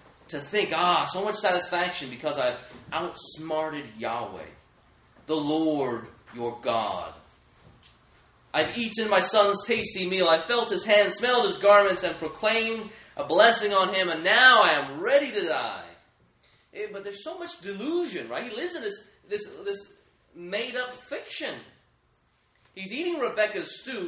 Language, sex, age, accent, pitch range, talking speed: English, male, 30-49, American, 155-235 Hz, 140 wpm